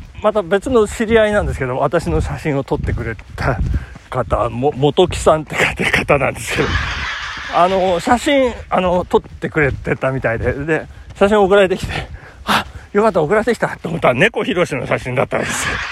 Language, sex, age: Japanese, male, 40-59